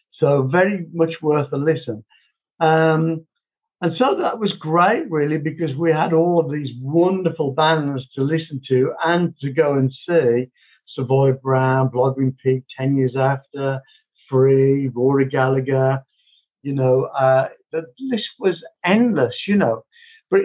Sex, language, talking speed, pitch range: male, English, 145 wpm, 130-170 Hz